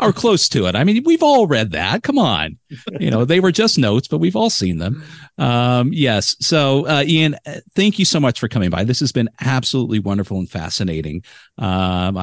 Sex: male